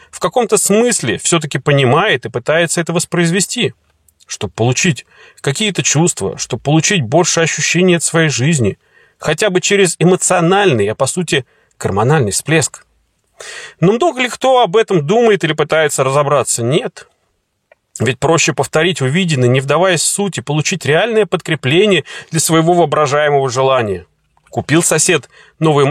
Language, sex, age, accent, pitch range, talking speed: Russian, male, 30-49, native, 140-190 Hz, 135 wpm